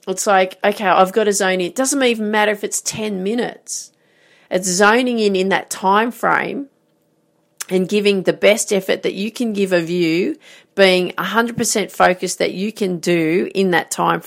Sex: female